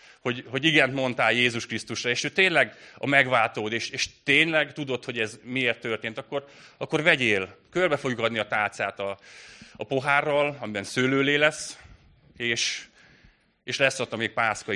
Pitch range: 110-145 Hz